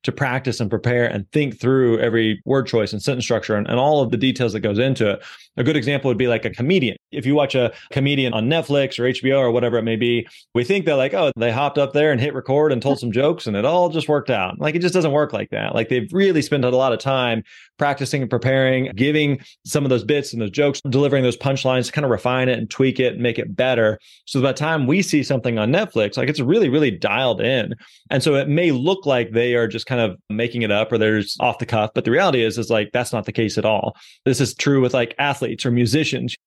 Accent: American